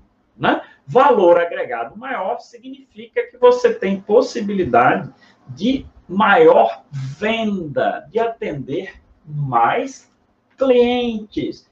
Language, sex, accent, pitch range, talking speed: Portuguese, male, Brazilian, 155-255 Hz, 80 wpm